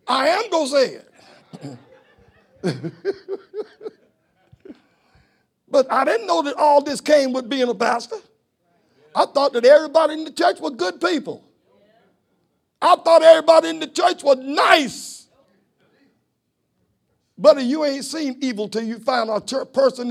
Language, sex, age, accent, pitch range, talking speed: English, male, 60-79, American, 195-305 Hz, 135 wpm